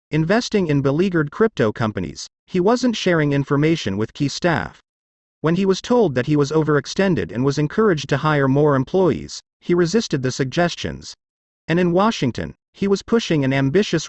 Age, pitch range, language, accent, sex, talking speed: 40-59, 130-185 Hz, English, American, male, 165 wpm